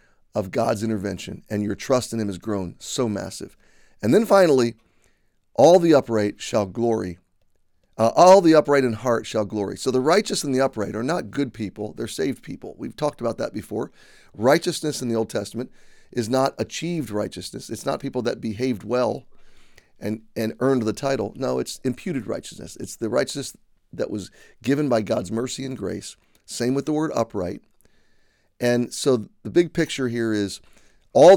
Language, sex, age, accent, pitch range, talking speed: English, male, 40-59, American, 110-140 Hz, 180 wpm